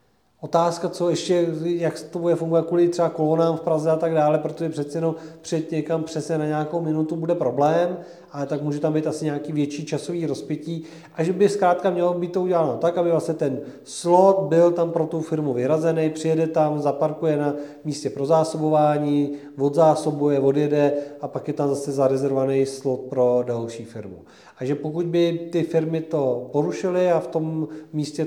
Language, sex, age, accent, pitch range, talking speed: Czech, male, 40-59, native, 145-165 Hz, 185 wpm